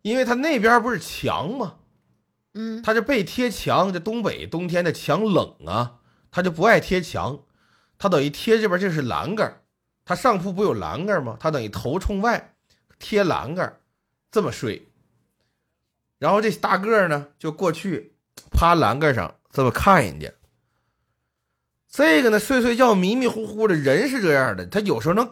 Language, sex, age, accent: Chinese, male, 30-49, native